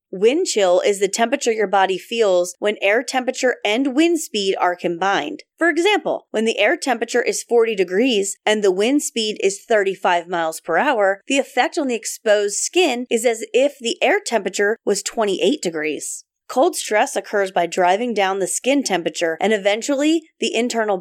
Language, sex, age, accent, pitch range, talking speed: English, female, 30-49, American, 195-260 Hz, 175 wpm